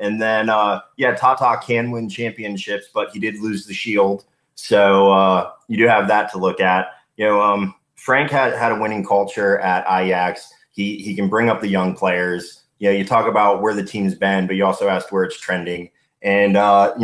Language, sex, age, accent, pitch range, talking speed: English, male, 20-39, American, 95-105 Hz, 210 wpm